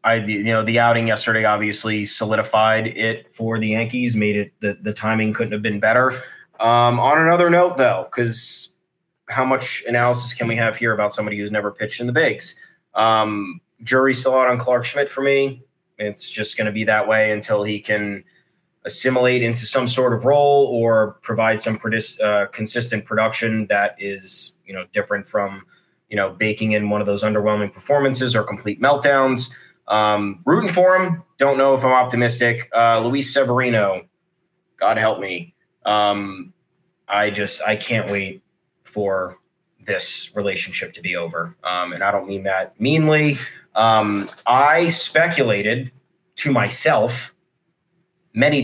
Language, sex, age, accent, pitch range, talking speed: English, male, 20-39, American, 105-130 Hz, 165 wpm